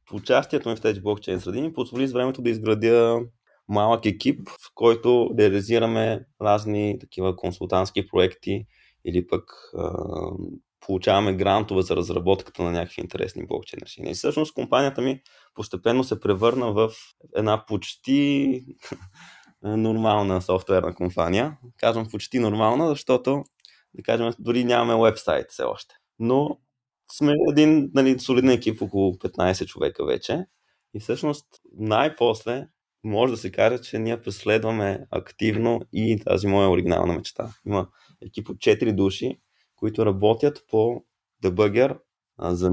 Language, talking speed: Bulgarian, 130 wpm